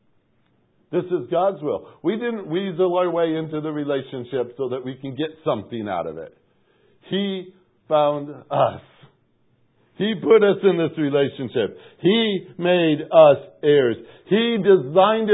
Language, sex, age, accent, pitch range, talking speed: English, male, 60-79, American, 145-185 Hz, 140 wpm